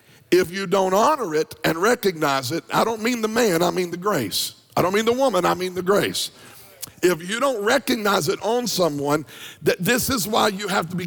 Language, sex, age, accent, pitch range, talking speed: English, male, 50-69, American, 150-195 Hz, 220 wpm